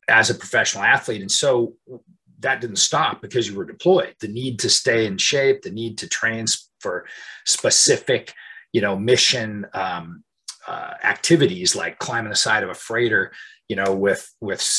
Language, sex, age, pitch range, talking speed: English, male, 40-59, 105-135 Hz, 170 wpm